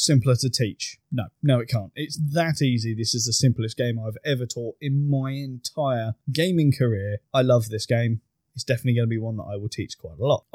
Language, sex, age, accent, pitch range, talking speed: English, male, 20-39, British, 115-140 Hz, 230 wpm